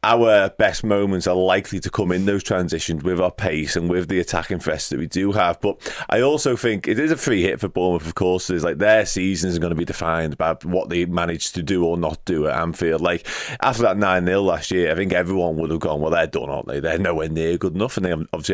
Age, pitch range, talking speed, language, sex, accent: 30-49, 85-100 Hz, 260 wpm, English, male, British